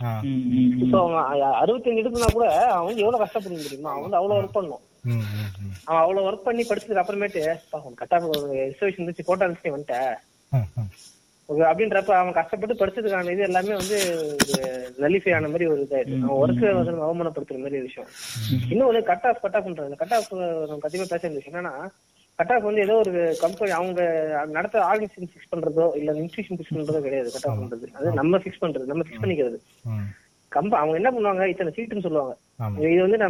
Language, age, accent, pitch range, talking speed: Tamil, 20-39, native, 140-195 Hz, 30 wpm